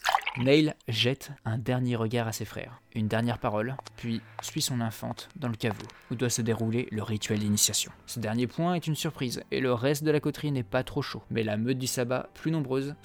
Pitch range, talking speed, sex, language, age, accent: 115-135 Hz, 220 wpm, male, French, 20-39, French